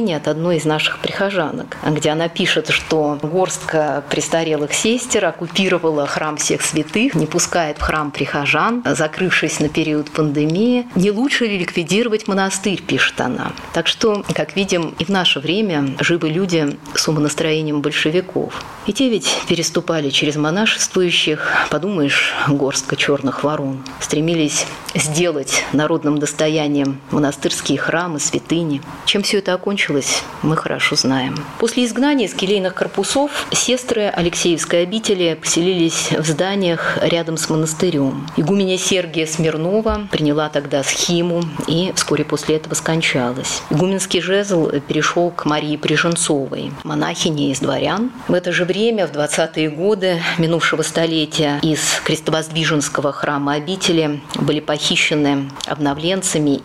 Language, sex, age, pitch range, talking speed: Russian, female, 30-49, 150-185 Hz, 125 wpm